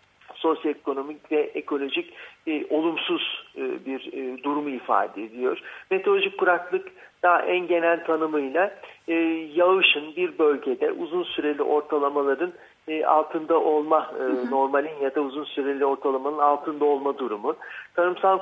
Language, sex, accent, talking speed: Turkish, male, native, 125 wpm